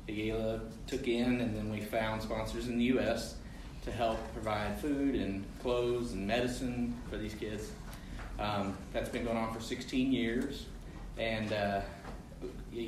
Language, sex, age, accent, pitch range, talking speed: English, male, 30-49, American, 110-130 Hz, 150 wpm